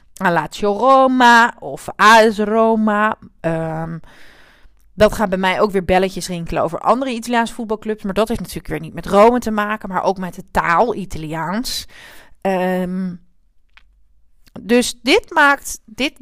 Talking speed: 145 wpm